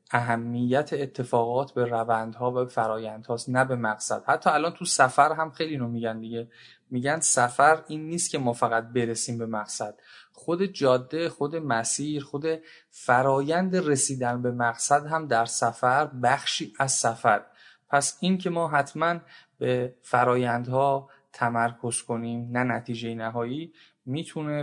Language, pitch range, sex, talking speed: Persian, 120-150 Hz, male, 135 wpm